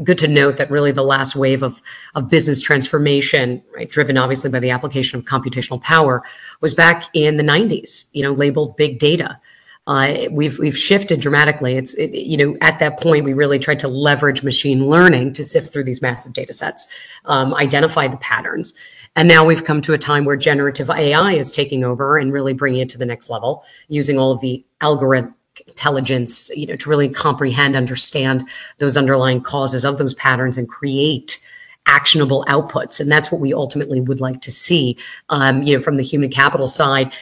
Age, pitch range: 40-59, 130-150 Hz